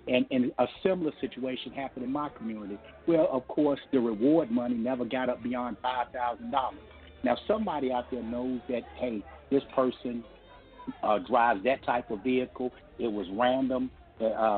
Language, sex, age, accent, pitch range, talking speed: English, male, 60-79, American, 110-130 Hz, 165 wpm